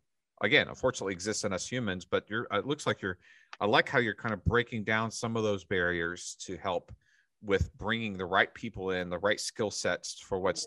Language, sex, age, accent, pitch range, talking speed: English, male, 40-59, American, 95-115 Hz, 215 wpm